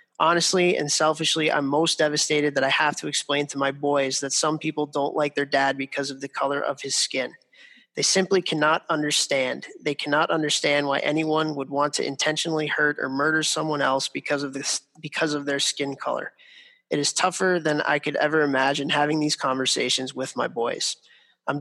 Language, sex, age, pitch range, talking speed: English, male, 20-39, 140-155 Hz, 190 wpm